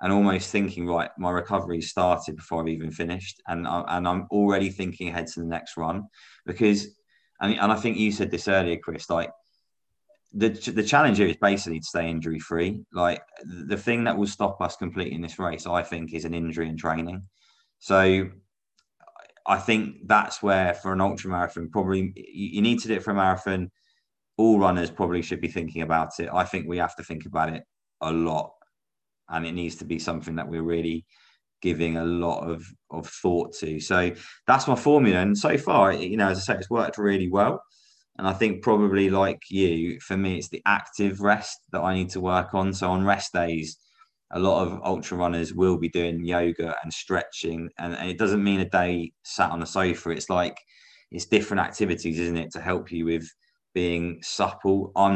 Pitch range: 85-100 Hz